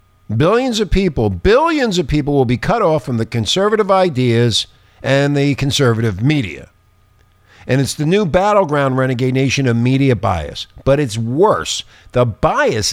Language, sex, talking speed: English, male, 155 wpm